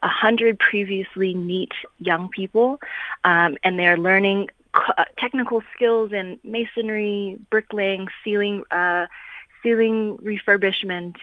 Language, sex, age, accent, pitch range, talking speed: English, female, 20-39, American, 165-200 Hz, 110 wpm